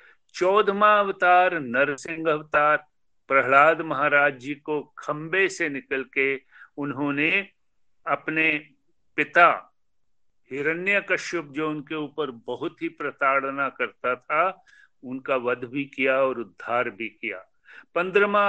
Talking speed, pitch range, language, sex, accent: 95 wpm, 135-185 Hz, Hindi, male, native